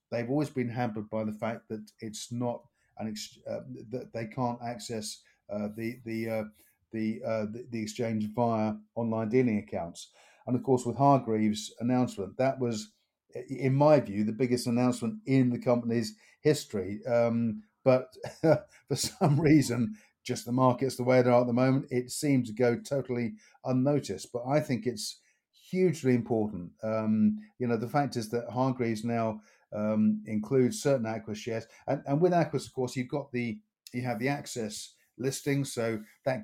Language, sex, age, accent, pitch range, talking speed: English, male, 50-69, British, 110-125 Hz, 170 wpm